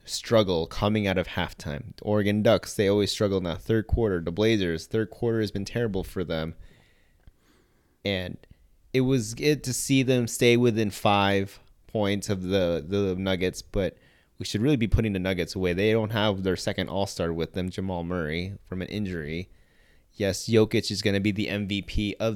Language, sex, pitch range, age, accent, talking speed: English, male, 95-110 Hz, 20-39, American, 185 wpm